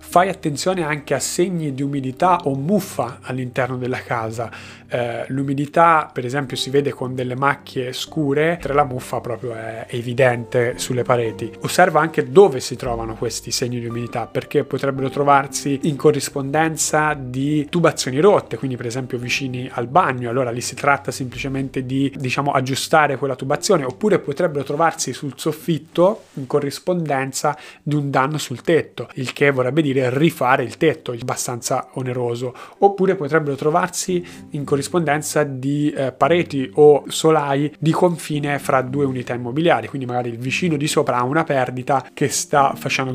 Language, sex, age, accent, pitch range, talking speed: Italian, male, 30-49, native, 125-150 Hz, 155 wpm